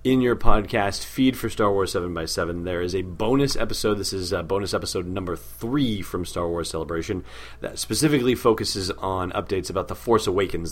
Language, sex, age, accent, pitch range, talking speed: English, male, 30-49, American, 85-110 Hz, 185 wpm